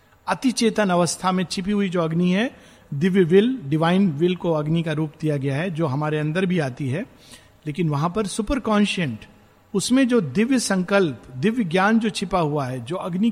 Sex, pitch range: male, 135-195 Hz